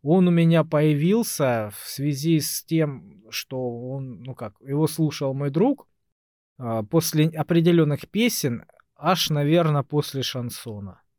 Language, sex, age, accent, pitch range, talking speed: Russian, male, 20-39, native, 125-175 Hz, 125 wpm